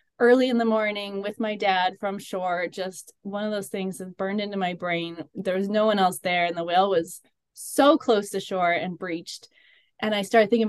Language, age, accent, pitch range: English, 20-39, American, 185-220 Hz